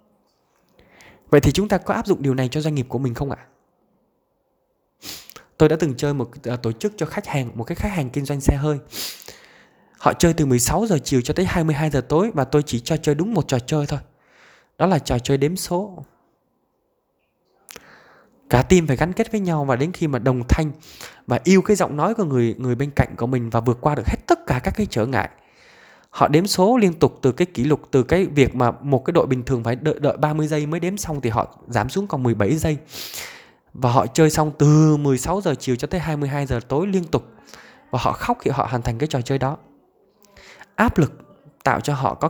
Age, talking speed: 20-39, 230 wpm